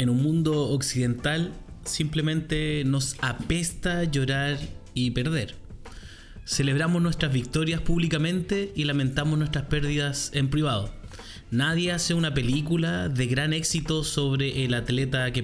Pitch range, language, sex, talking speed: 120-155 Hz, Spanish, male, 120 wpm